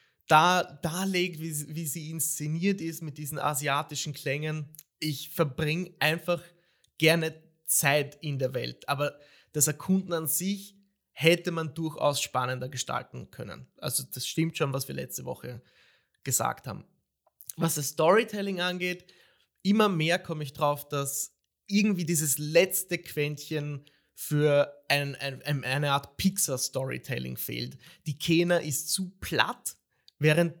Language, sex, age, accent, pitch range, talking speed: German, male, 30-49, German, 145-170 Hz, 130 wpm